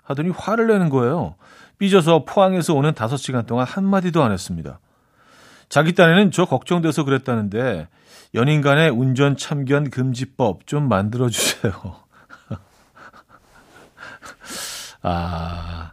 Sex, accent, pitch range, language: male, native, 115-160 Hz, Korean